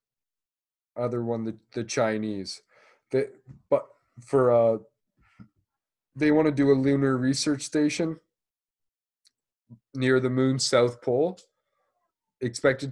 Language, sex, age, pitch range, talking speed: English, male, 20-39, 105-125 Hz, 105 wpm